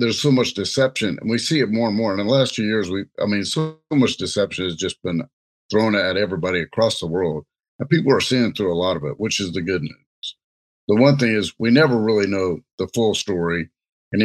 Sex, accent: male, American